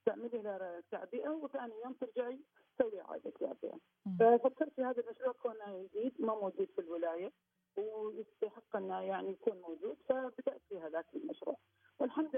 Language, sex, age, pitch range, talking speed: Arabic, female, 40-59, 200-255 Hz, 140 wpm